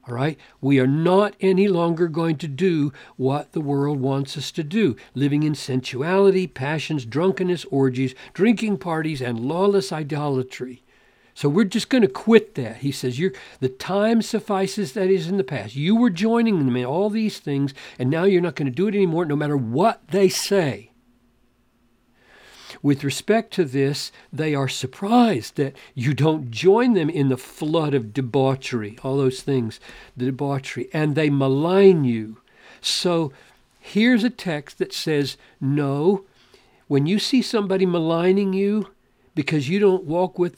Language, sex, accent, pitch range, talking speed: English, male, American, 135-190 Hz, 165 wpm